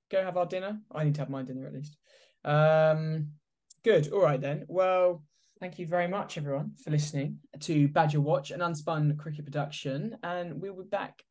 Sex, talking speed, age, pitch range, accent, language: male, 190 wpm, 10-29, 135-170 Hz, British, English